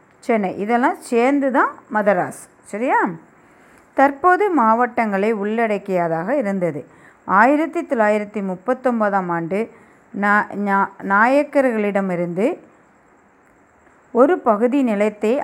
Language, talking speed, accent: Tamil, 70 wpm, native